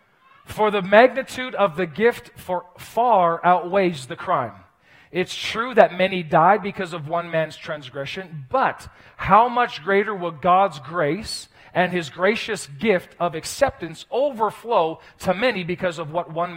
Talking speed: 150 wpm